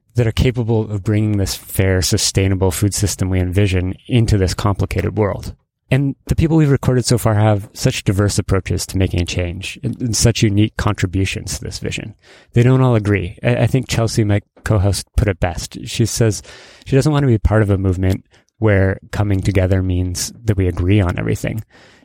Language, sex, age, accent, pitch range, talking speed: English, male, 30-49, American, 95-115 Hz, 190 wpm